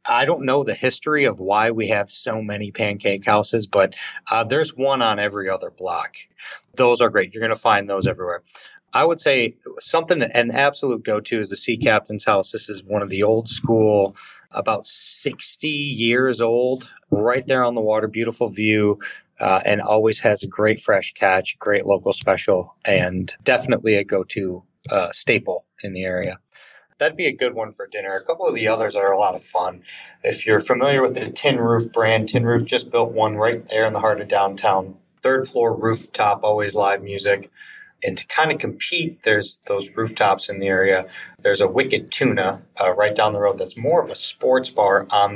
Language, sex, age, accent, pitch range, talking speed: English, male, 30-49, American, 105-155 Hz, 195 wpm